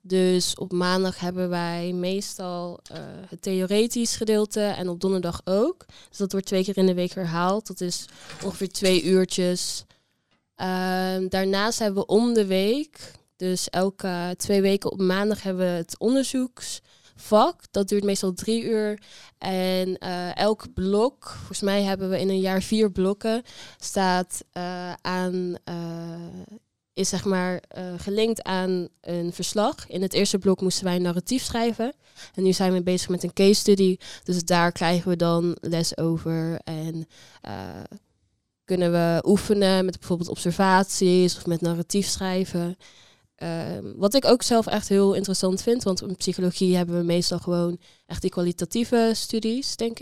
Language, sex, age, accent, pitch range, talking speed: Dutch, female, 20-39, Dutch, 180-205 Hz, 160 wpm